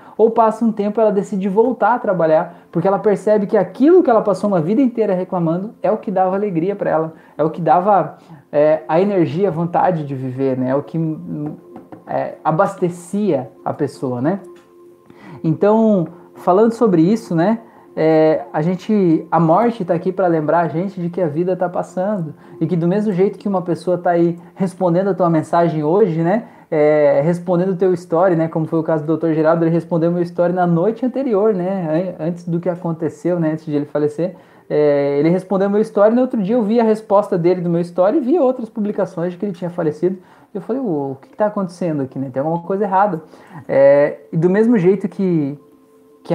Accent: Brazilian